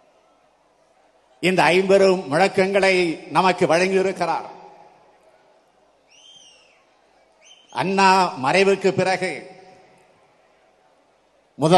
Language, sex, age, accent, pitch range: Tamil, male, 50-69, native, 180-195 Hz